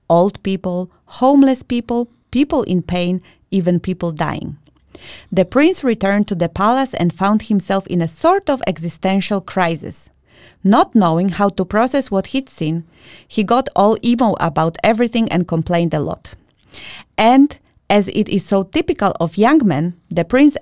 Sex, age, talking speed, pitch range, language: female, 30-49, 155 wpm, 175-225 Hz, English